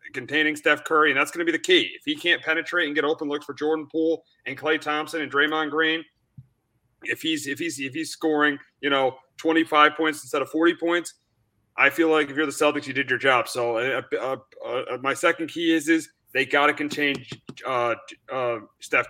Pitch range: 135-160 Hz